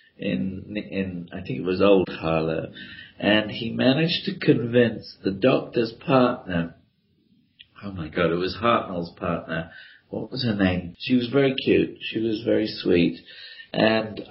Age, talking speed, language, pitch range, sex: 50-69, 150 wpm, English, 95-120 Hz, male